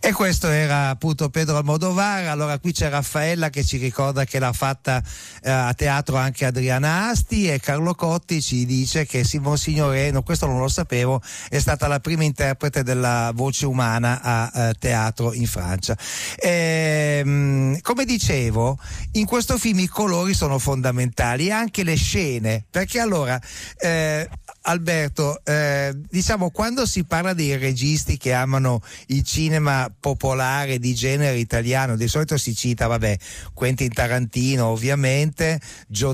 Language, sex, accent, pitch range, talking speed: Italian, male, native, 120-155 Hz, 150 wpm